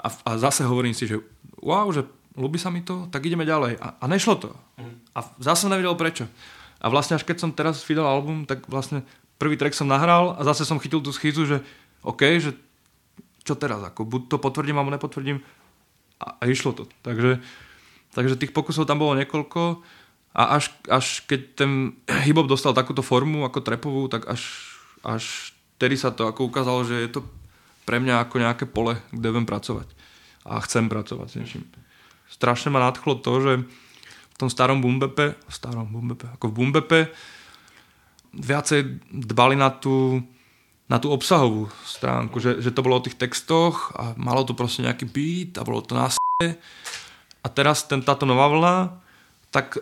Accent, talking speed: native, 170 wpm